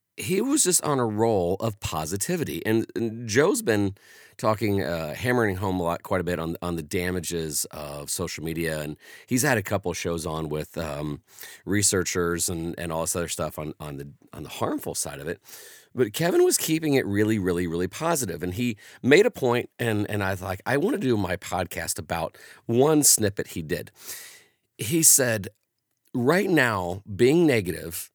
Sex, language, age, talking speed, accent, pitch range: male, English, 40-59, 190 wpm, American, 90-130 Hz